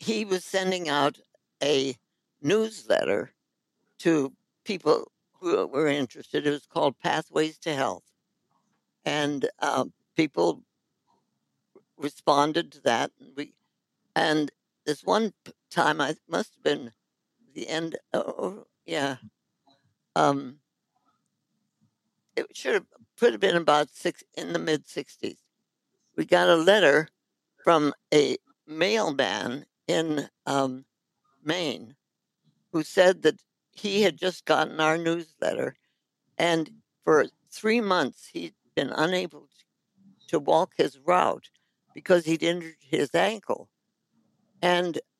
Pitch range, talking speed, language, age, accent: 150-195 Hz, 115 wpm, English, 60-79, American